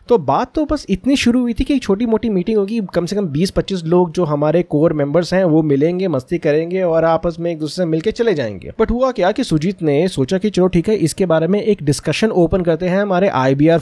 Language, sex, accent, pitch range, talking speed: Hindi, male, native, 145-185 Hz, 245 wpm